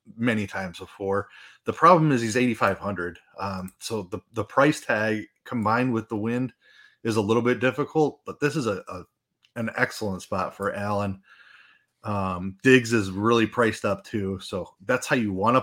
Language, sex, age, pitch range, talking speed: English, male, 30-49, 100-120 Hz, 175 wpm